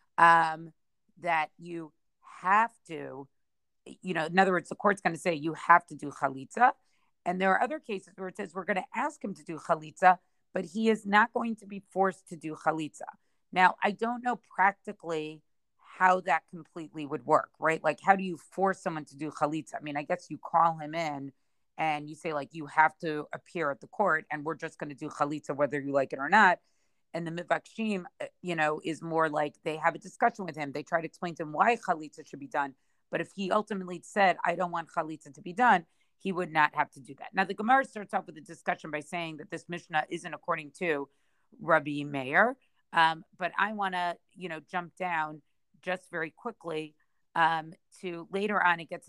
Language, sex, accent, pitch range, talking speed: English, female, American, 155-190 Hz, 220 wpm